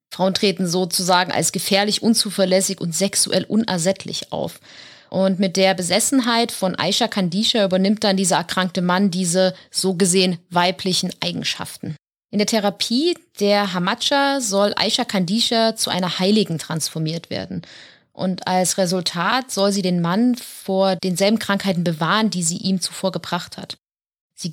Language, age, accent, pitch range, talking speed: German, 30-49, German, 180-215 Hz, 140 wpm